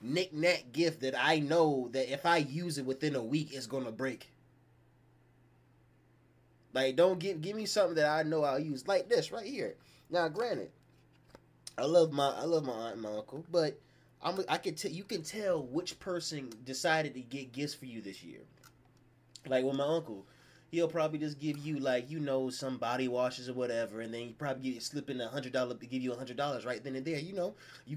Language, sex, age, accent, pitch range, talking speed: English, male, 20-39, American, 130-170 Hz, 225 wpm